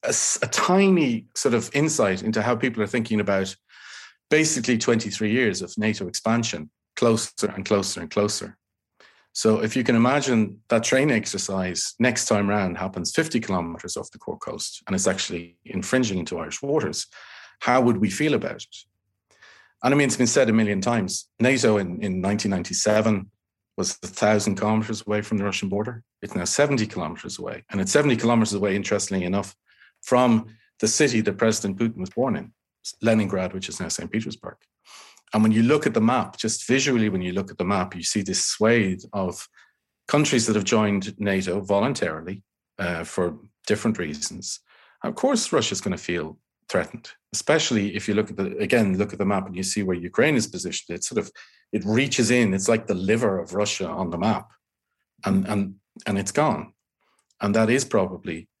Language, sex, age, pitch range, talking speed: English, male, 40-59, 100-115 Hz, 185 wpm